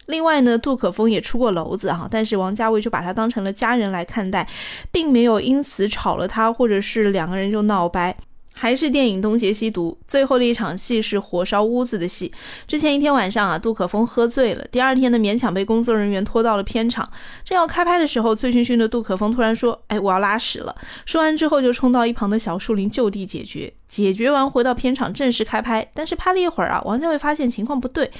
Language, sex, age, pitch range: Chinese, female, 20-39, 205-255 Hz